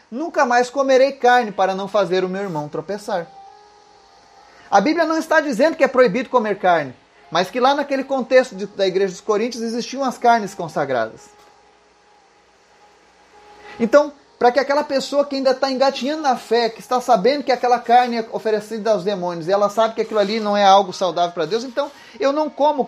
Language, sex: Portuguese, male